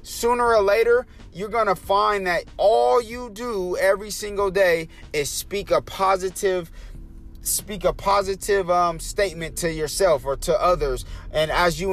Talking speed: 150 wpm